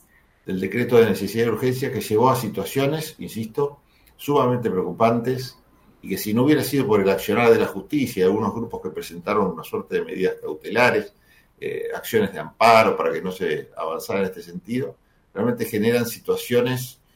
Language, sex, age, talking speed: Spanish, male, 50-69, 170 wpm